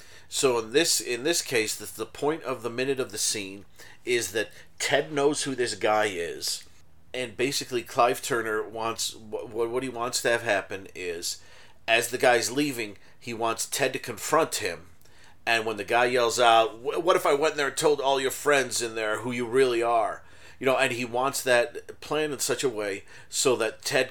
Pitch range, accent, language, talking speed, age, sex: 110-140 Hz, American, English, 205 wpm, 40-59, male